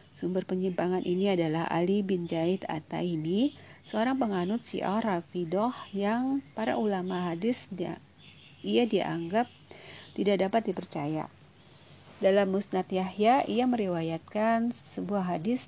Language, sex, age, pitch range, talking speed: Indonesian, female, 40-59, 175-215 Hz, 110 wpm